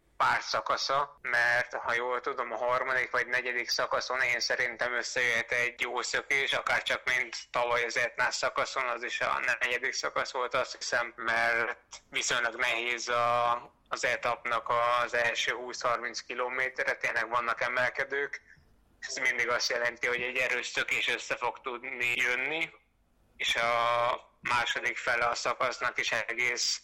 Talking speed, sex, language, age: 140 wpm, male, Hungarian, 20-39